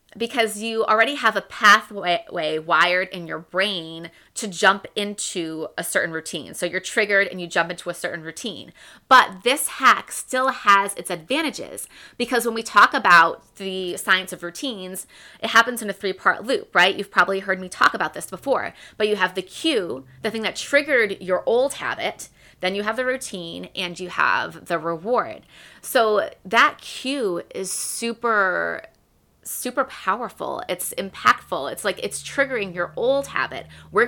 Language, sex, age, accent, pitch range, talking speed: English, female, 20-39, American, 180-230 Hz, 170 wpm